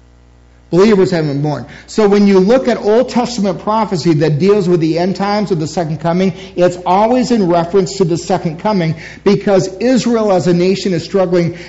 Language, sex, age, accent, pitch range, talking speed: English, male, 50-69, American, 160-200 Hz, 190 wpm